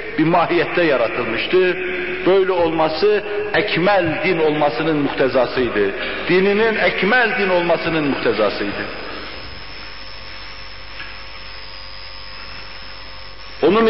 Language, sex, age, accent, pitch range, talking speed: Turkish, male, 60-79, native, 130-185 Hz, 65 wpm